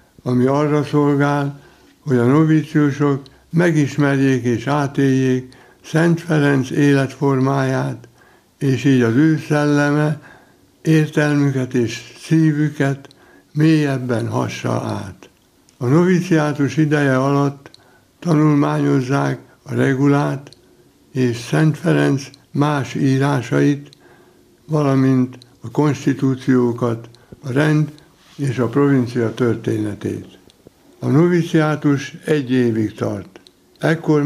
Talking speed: 90 wpm